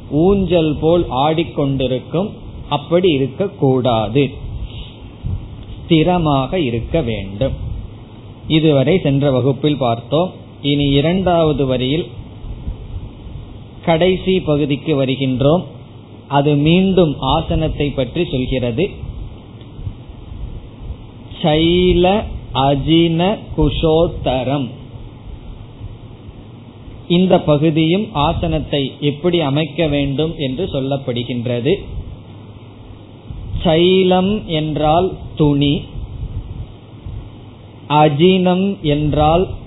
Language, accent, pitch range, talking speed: Tamil, native, 115-160 Hz, 45 wpm